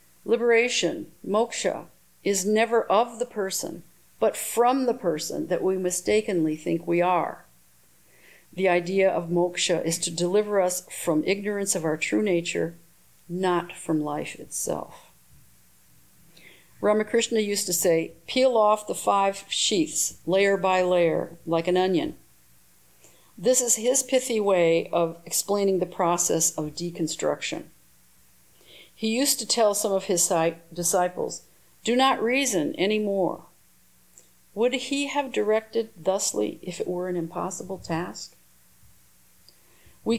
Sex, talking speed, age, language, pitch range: female, 125 wpm, 50-69, English, 165-215 Hz